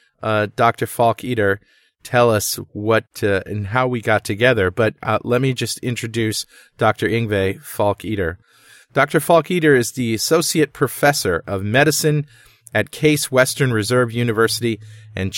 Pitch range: 105-135 Hz